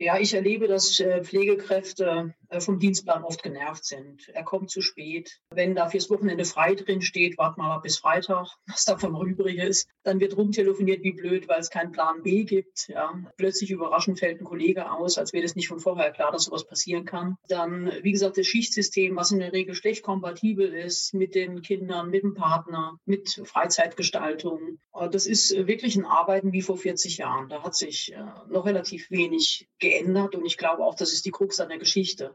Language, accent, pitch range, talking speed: German, German, 175-200 Hz, 195 wpm